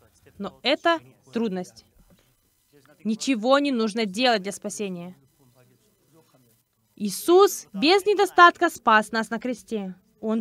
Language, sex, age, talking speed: Russian, female, 20-39, 100 wpm